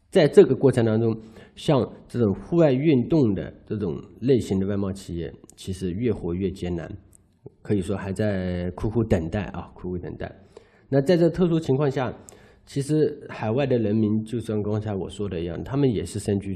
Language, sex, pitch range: Chinese, male, 95-120 Hz